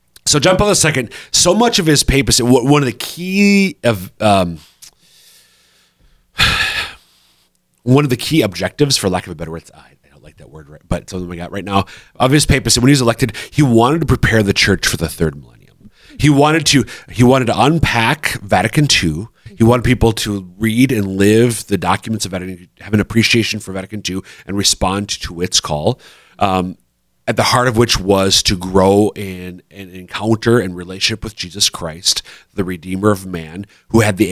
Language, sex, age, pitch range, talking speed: English, male, 30-49, 90-120 Hz, 195 wpm